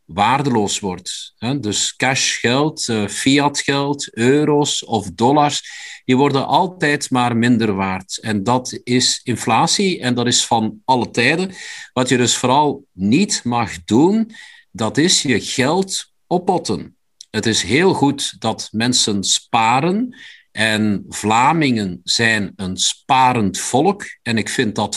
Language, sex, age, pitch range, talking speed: Dutch, male, 50-69, 110-150 Hz, 125 wpm